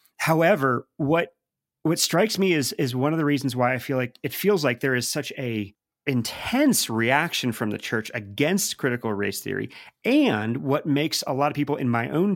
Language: English